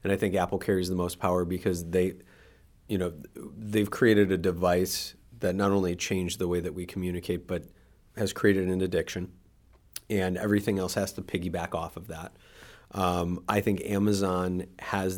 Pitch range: 90-100 Hz